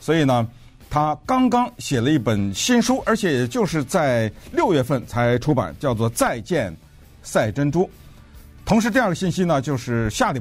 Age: 50-69